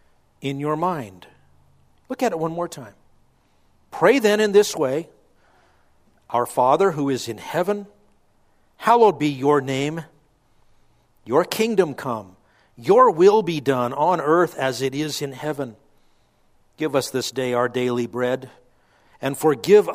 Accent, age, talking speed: American, 50-69, 140 wpm